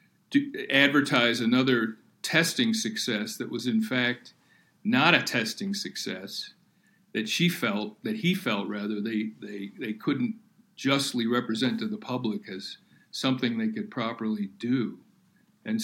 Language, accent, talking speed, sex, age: English, American, 135 wpm, male, 50-69